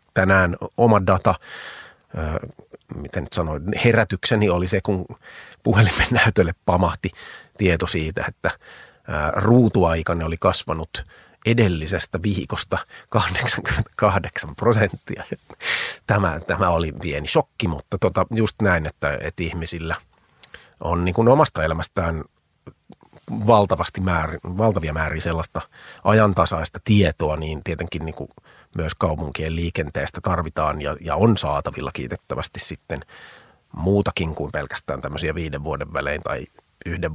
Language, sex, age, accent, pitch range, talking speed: Finnish, male, 30-49, native, 80-100 Hz, 110 wpm